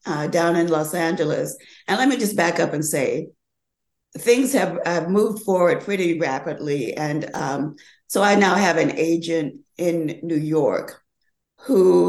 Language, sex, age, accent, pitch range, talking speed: English, female, 50-69, American, 160-200 Hz, 160 wpm